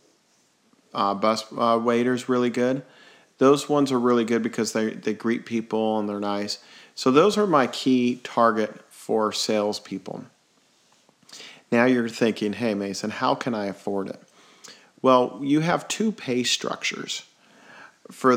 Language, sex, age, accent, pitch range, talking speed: English, male, 40-59, American, 105-125 Hz, 145 wpm